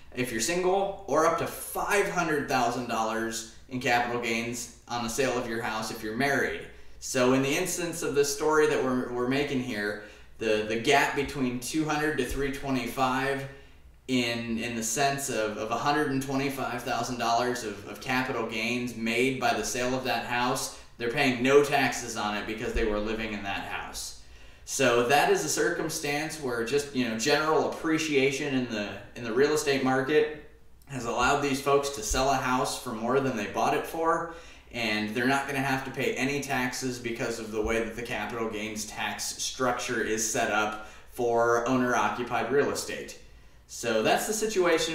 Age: 20-39